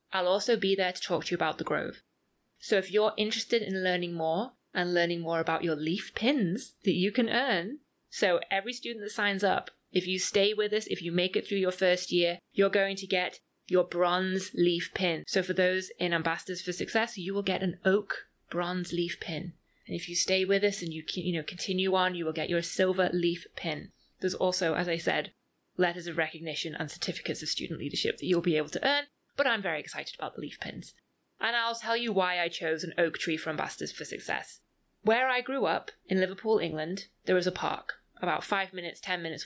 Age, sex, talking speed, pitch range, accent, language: 20-39, female, 225 wpm, 170-195 Hz, British, English